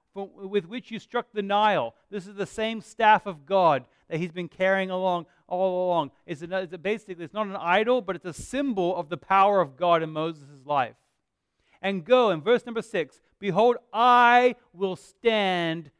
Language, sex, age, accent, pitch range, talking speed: English, male, 30-49, American, 160-215 Hz, 180 wpm